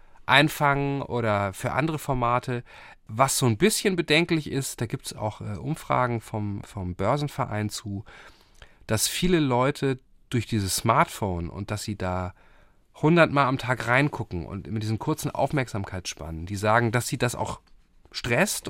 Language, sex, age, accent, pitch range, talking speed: German, male, 40-59, German, 110-145 Hz, 150 wpm